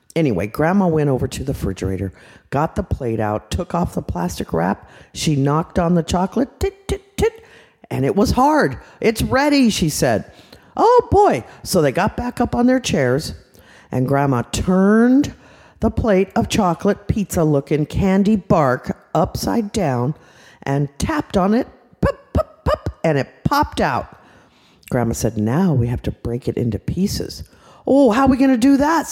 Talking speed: 170 wpm